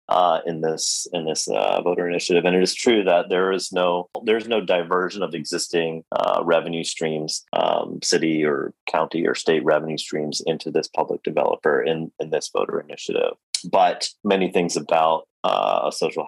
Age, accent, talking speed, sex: 30-49, American, 175 wpm, male